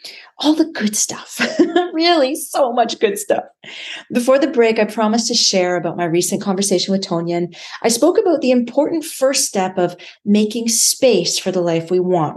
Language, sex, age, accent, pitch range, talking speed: English, female, 30-49, American, 185-245 Hz, 185 wpm